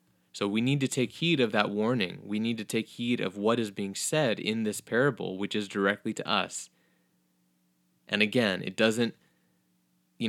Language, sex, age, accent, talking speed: English, male, 20-39, American, 185 wpm